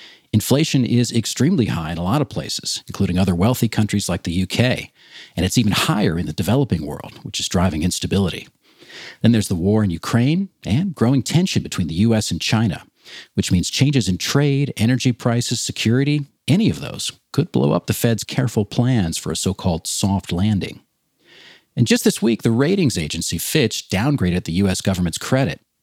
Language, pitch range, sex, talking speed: English, 95-145 Hz, male, 180 wpm